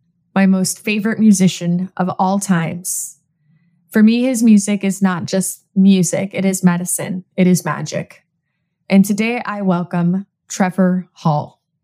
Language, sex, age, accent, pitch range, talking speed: English, female, 20-39, American, 175-210 Hz, 135 wpm